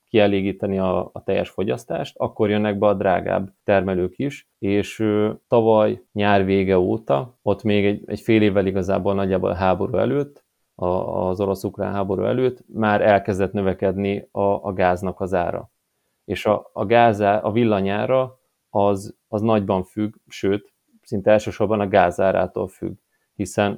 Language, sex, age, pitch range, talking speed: Hungarian, male, 30-49, 95-110 Hz, 150 wpm